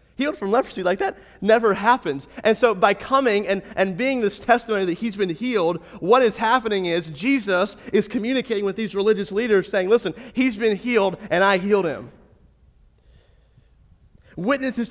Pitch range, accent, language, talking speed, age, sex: 160-225 Hz, American, English, 165 wpm, 30-49, male